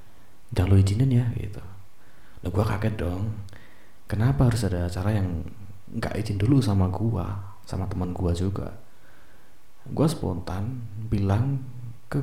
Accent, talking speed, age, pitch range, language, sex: native, 135 wpm, 30-49, 95-115 Hz, Indonesian, male